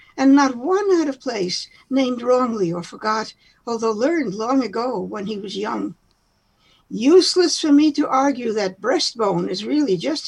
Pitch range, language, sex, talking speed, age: 210-300 Hz, English, female, 165 wpm, 60-79